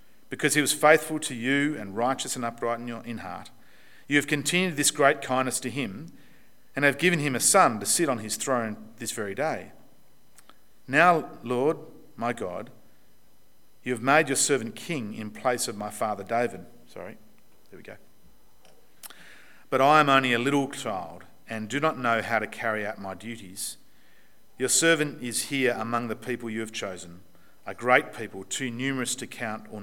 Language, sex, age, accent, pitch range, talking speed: English, male, 40-59, Australian, 115-135 Hz, 185 wpm